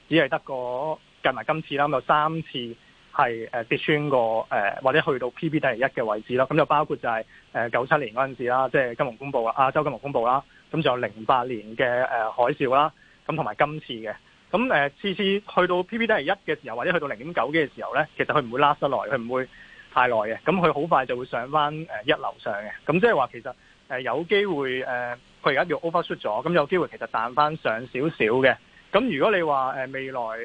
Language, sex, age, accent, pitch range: Chinese, male, 20-39, native, 125-155 Hz